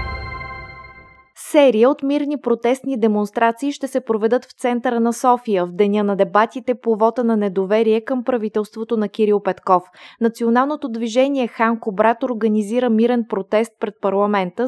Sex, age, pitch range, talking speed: female, 20-39, 200-245 Hz, 135 wpm